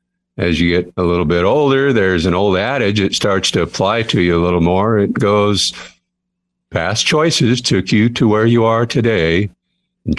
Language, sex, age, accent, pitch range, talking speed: English, male, 50-69, American, 90-120 Hz, 190 wpm